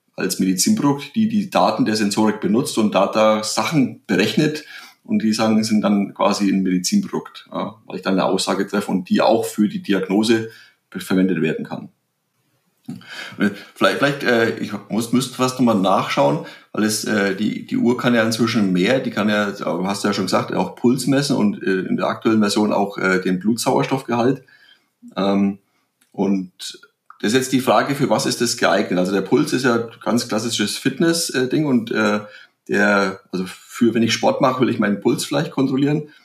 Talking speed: 185 wpm